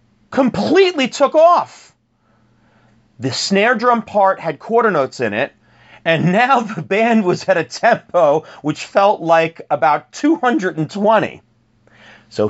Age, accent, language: 30-49, American, English